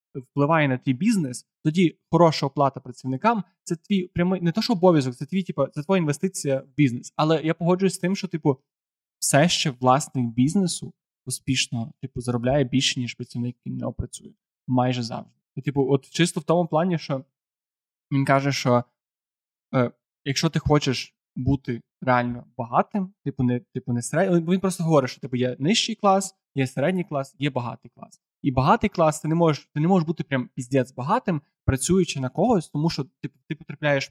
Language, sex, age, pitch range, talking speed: Ukrainian, male, 20-39, 130-170 Hz, 180 wpm